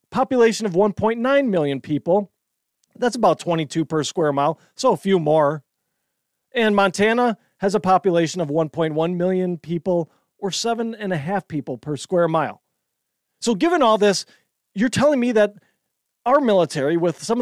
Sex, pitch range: male, 175-230 Hz